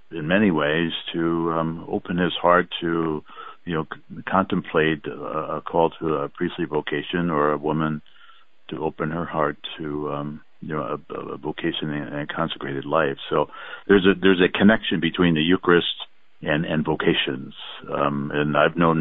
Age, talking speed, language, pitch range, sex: 60-79, 170 wpm, English, 75-85 Hz, male